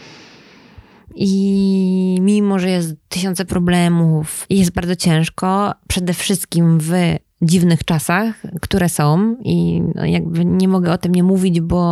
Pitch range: 175-210 Hz